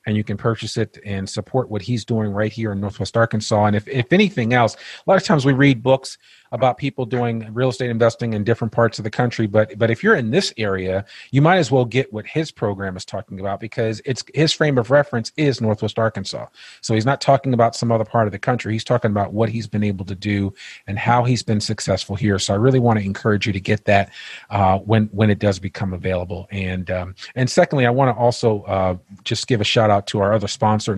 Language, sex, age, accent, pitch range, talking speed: English, male, 40-59, American, 100-125 Hz, 240 wpm